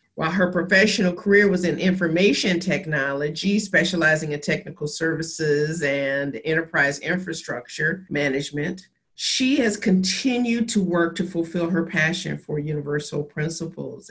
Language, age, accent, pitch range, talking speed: English, 50-69, American, 150-185 Hz, 120 wpm